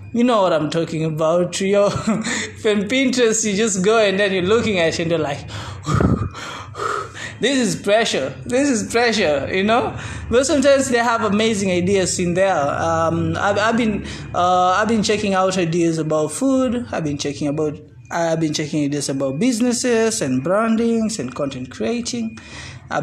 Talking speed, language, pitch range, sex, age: 175 wpm, English, 165-230 Hz, male, 20-39